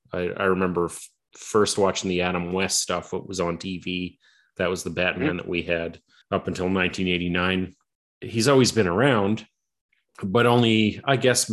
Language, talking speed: English, 155 wpm